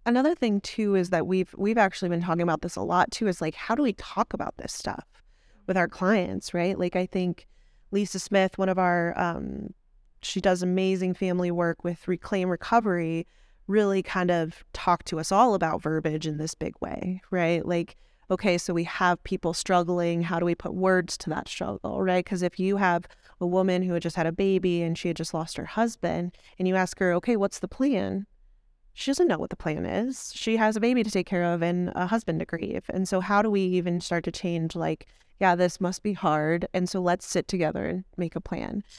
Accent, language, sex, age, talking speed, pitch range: American, English, female, 20-39, 225 wpm, 175-210 Hz